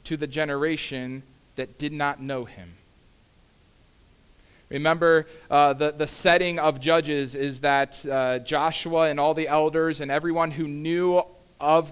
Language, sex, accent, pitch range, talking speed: English, male, American, 115-160 Hz, 140 wpm